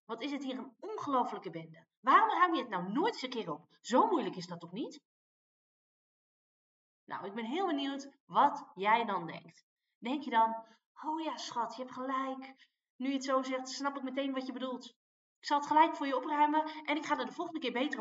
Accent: Dutch